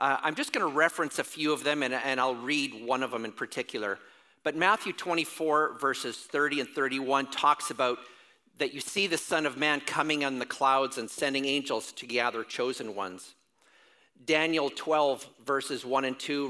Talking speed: 185 wpm